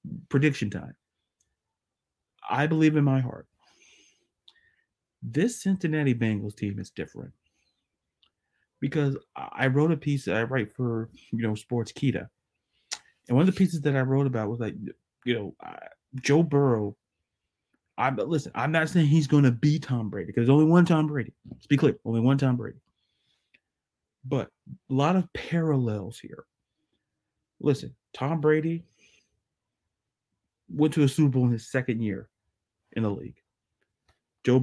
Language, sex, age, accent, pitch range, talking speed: English, male, 30-49, American, 110-145 Hz, 150 wpm